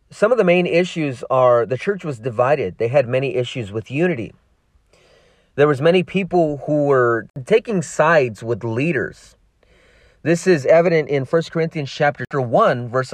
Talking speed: 160 wpm